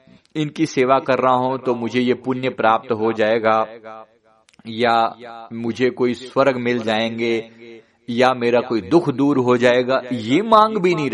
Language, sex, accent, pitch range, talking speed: Hindi, male, native, 110-135 Hz, 155 wpm